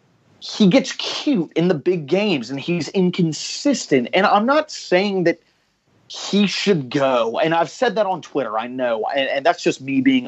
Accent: American